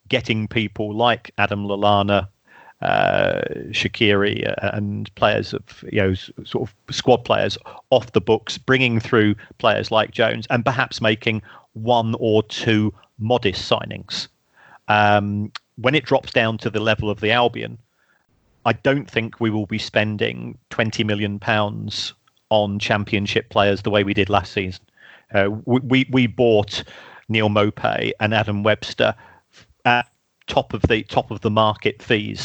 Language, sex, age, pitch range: English, male, 40-59, 105-115 Hz